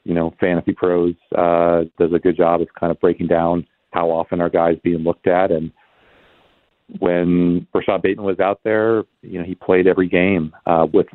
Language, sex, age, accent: English, male, 40-59, American